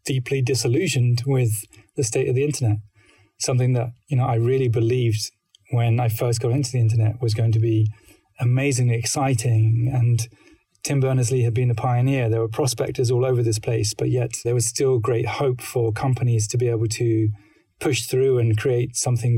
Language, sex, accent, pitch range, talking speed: English, male, British, 115-130 Hz, 185 wpm